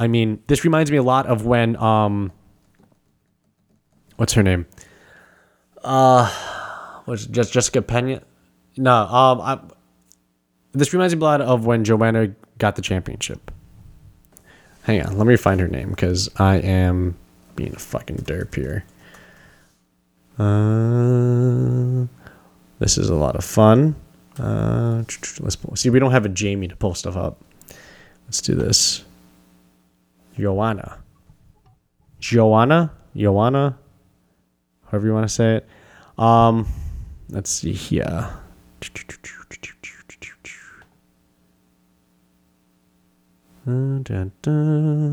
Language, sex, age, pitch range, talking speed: English, male, 20-39, 90-120 Hz, 110 wpm